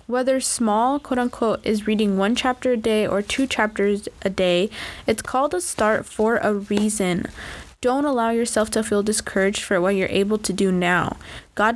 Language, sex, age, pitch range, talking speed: English, female, 10-29, 205-240 Hz, 185 wpm